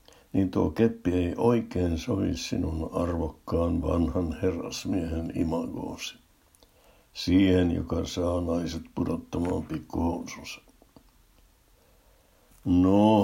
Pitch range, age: 85-95 Hz, 60-79